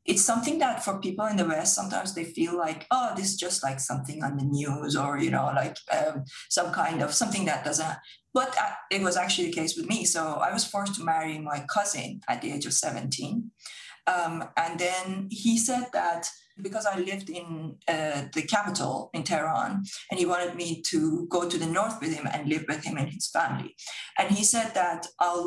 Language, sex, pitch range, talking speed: English, female, 165-220 Hz, 215 wpm